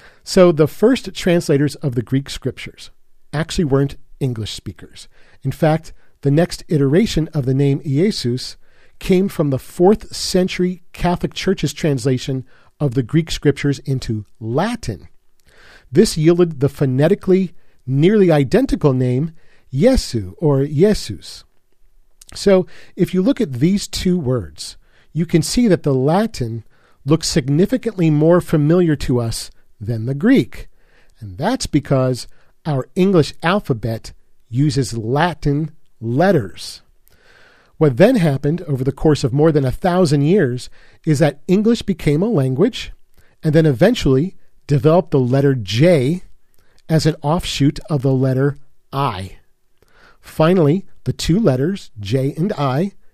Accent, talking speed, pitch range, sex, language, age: American, 130 wpm, 130-180 Hz, male, English, 40-59